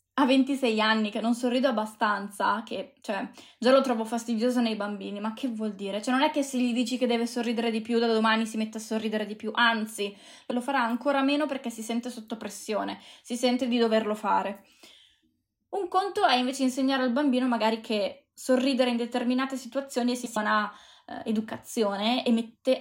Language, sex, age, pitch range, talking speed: Italian, female, 20-39, 220-260 Hz, 190 wpm